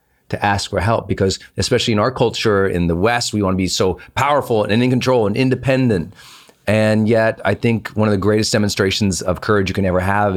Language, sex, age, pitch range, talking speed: English, male, 30-49, 100-125 Hz, 215 wpm